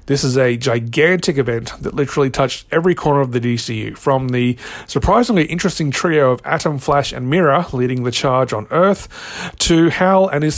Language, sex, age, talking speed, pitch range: English, male, 40-59, 180 wpm, 130-160 Hz